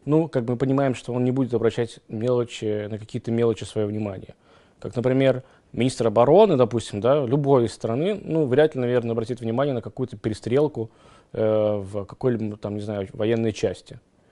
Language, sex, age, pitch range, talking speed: Russian, male, 20-39, 110-135 Hz, 170 wpm